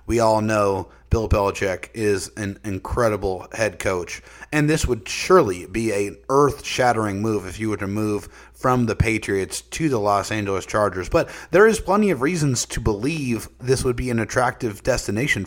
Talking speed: 175 wpm